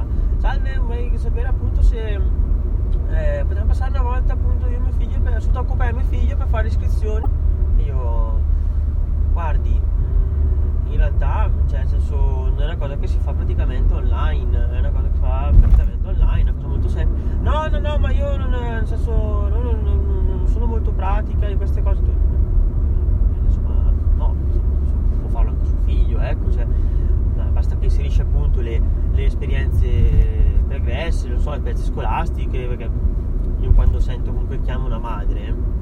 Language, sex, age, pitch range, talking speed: Italian, male, 20-39, 70-85 Hz, 170 wpm